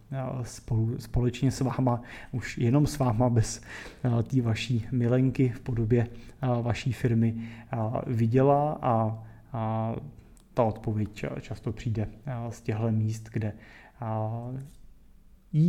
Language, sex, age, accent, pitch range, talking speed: Czech, male, 30-49, native, 120-140 Hz, 100 wpm